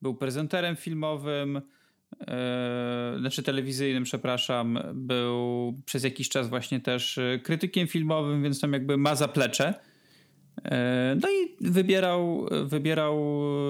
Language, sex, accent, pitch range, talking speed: Polish, male, native, 130-160 Hz, 100 wpm